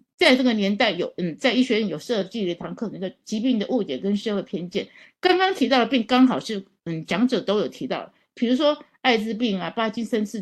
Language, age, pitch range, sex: Chinese, 50-69, 195-255 Hz, female